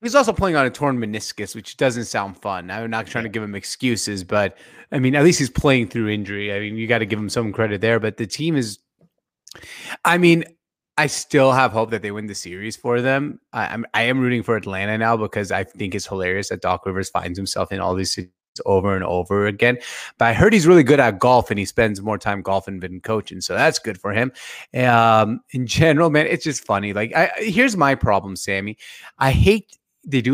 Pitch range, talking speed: 105-135 Hz, 225 wpm